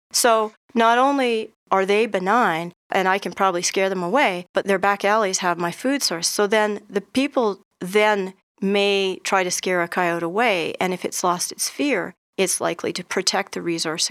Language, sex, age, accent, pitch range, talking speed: English, female, 40-59, American, 175-215 Hz, 190 wpm